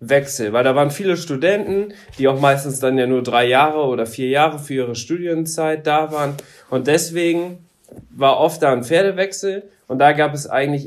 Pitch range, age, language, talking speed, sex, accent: 125-170 Hz, 20-39, German, 190 wpm, male, German